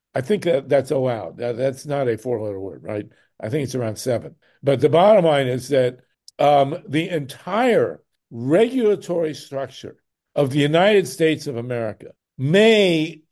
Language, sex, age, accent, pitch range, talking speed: English, male, 60-79, American, 140-185 Hz, 160 wpm